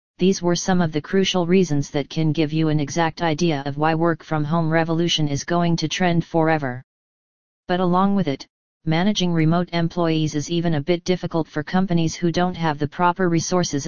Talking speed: 185 wpm